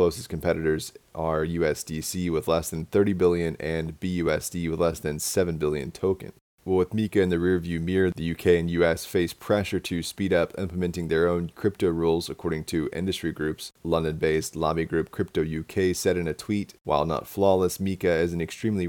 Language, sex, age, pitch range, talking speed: English, male, 30-49, 80-90 Hz, 185 wpm